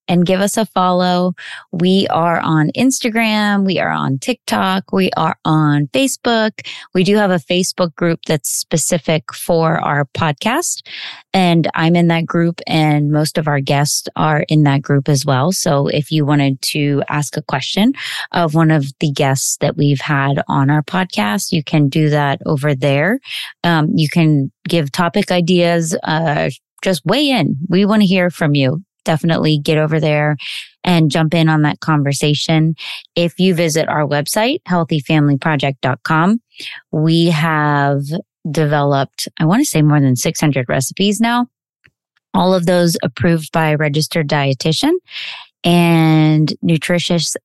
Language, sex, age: English, female, 20-39